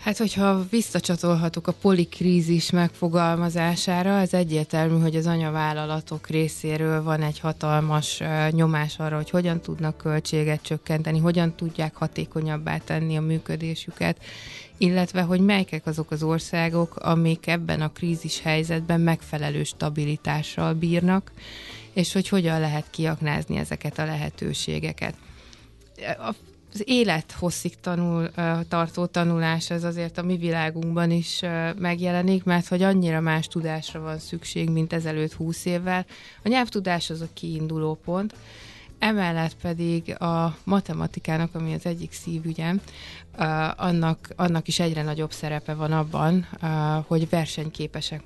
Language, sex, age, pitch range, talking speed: Hungarian, female, 20-39, 155-175 Hz, 115 wpm